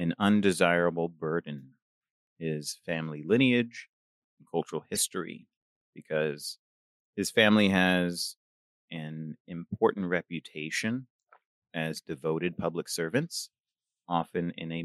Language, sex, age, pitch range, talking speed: English, male, 30-49, 80-90 Hz, 95 wpm